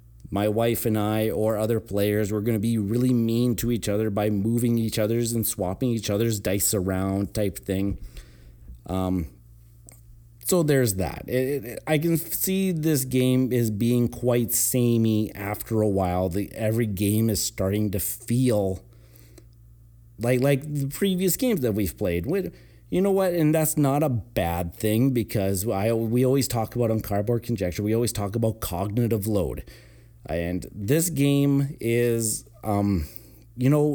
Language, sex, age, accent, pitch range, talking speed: English, male, 30-49, American, 100-125 Hz, 165 wpm